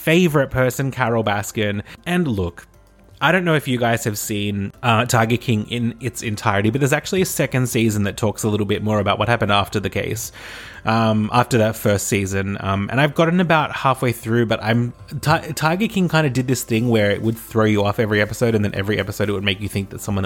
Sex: male